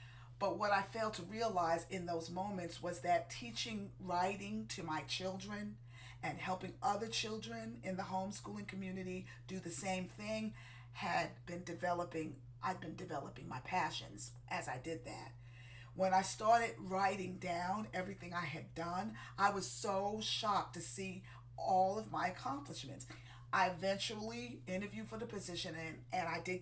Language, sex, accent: English, female, American